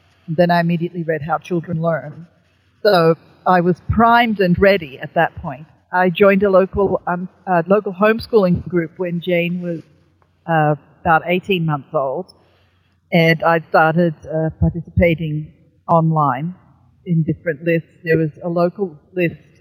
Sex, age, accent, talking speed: female, 50-69, Australian, 145 wpm